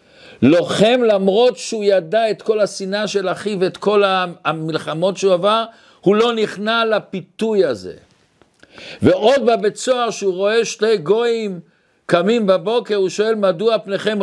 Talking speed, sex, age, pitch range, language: 135 wpm, male, 60-79, 180-225 Hz, Hebrew